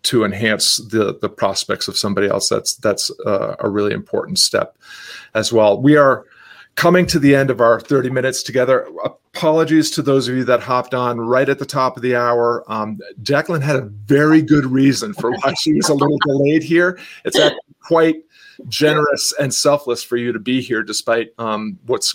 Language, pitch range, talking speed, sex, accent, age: English, 115-135 Hz, 195 wpm, male, American, 40-59